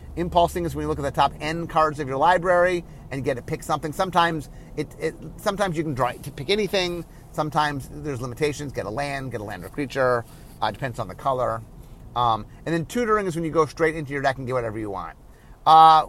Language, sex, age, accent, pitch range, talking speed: English, male, 30-49, American, 130-175 Hz, 235 wpm